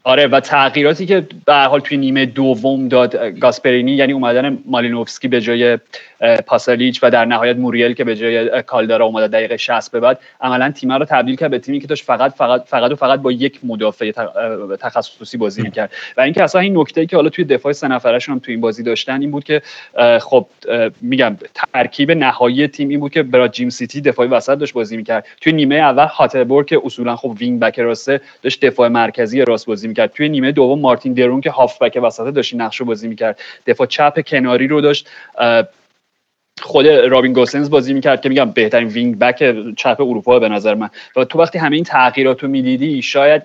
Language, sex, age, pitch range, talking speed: Persian, male, 30-49, 120-145 Hz, 200 wpm